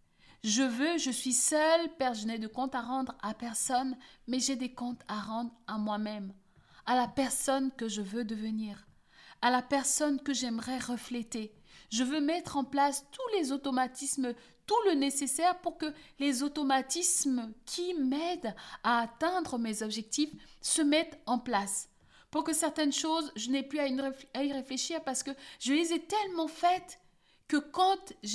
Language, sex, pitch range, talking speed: French, female, 235-290 Hz, 170 wpm